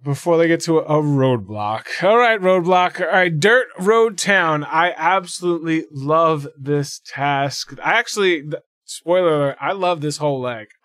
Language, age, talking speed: English, 20-39, 155 wpm